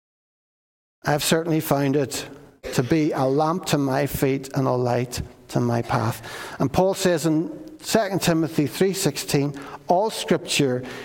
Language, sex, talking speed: English, male, 140 wpm